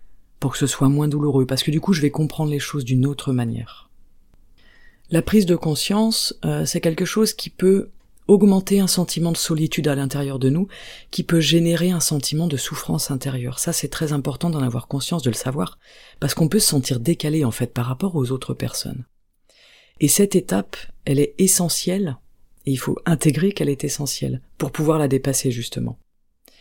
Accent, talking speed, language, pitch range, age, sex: French, 195 wpm, French, 135-175 Hz, 40-59, female